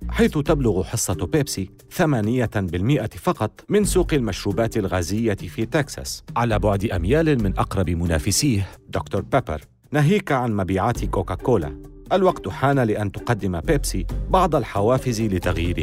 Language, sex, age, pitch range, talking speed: Arabic, male, 40-59, 100-150 Hz, 120 wpm